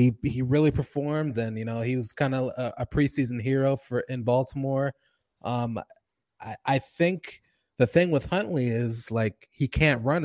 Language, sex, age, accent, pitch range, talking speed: English, male, 20-39, American, 105-125 Hz, 180 wpm